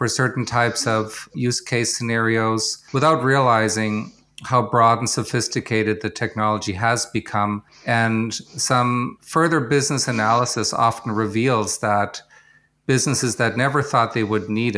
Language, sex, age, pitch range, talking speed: English, male, 50-69, 110-120 Hz, 130 wpm